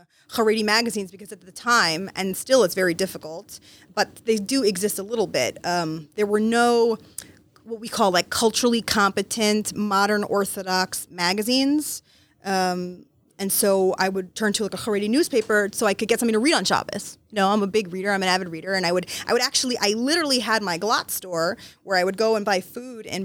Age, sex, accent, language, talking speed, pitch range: 20-39, female, American, English, 205 wpm, 195-250 Hz